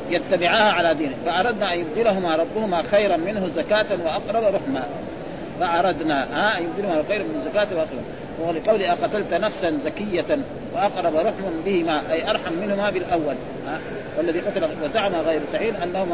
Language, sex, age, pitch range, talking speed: Arabic, male, 40-59, 175-225 Hz, 135 wpm